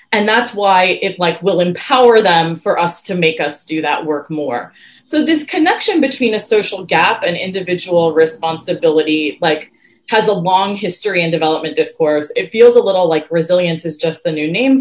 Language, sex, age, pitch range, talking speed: English, female, 20-39, 165-230 Hz, 185 wpm